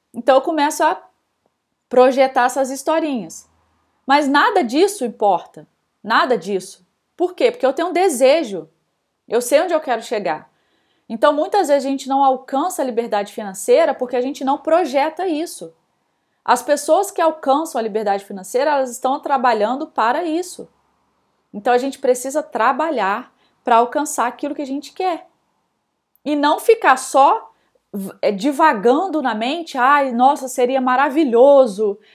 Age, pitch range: 20-39, 235-295 Hz